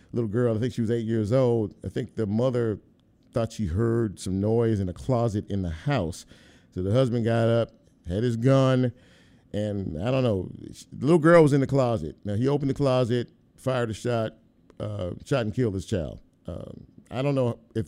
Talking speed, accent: 210 wpm, American